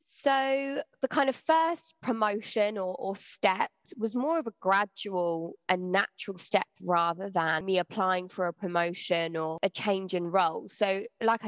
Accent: British